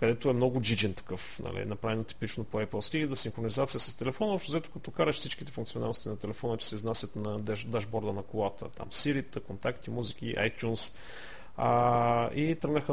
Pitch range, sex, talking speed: 110-135 Hz, male, 180 wpm